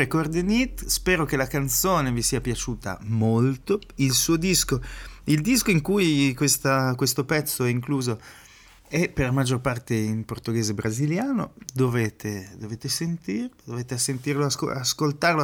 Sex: male